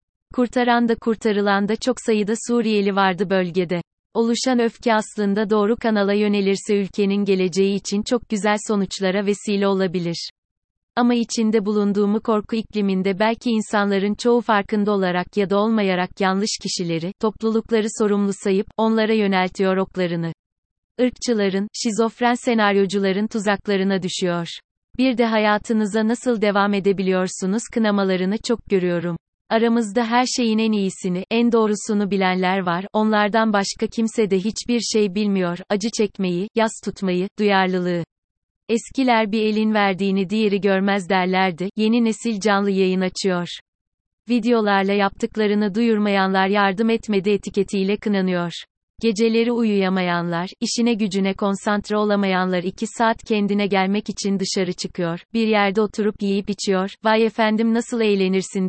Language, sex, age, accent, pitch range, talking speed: Turkish, female, 30-49, native, 190-225 Hz, 120 wpm